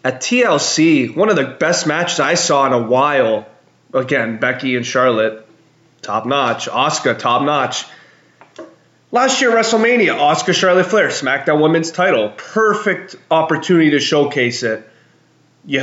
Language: English